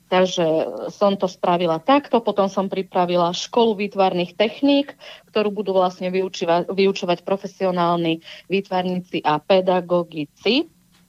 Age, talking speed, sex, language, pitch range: 30-49, 105 wpm, female, Slovak, 175-210 Hz